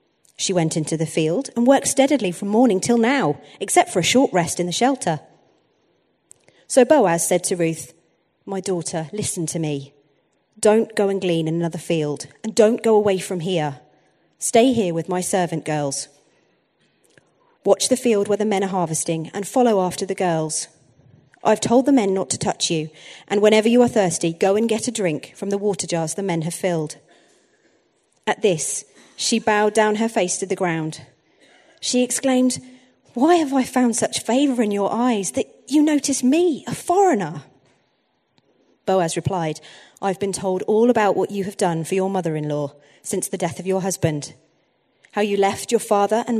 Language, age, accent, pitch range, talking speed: English, 40-59, British, 165-230 Hz, 180 wpm